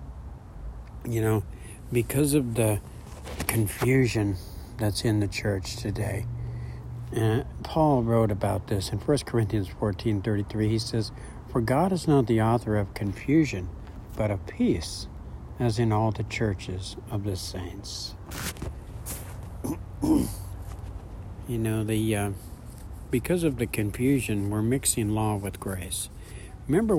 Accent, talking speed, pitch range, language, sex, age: American, 125 wpm, 95-120 Hz, English, male, 60-79